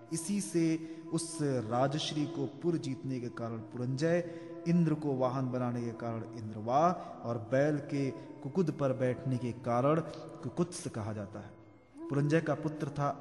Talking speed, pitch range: 145 wpm, 130-175 Hz